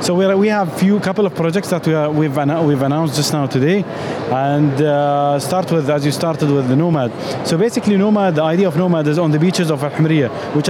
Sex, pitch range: male, 145-180 Hz